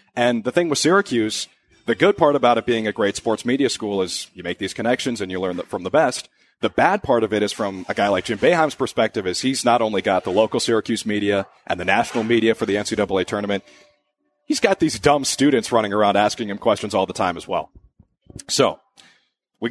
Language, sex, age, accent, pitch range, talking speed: English, male, 30-49, American, 100-130 Hz, 225 wpm